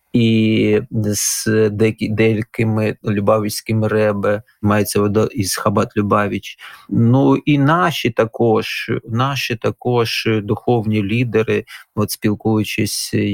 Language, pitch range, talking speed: Ukrainian, 105-120 Hz, 90 wpm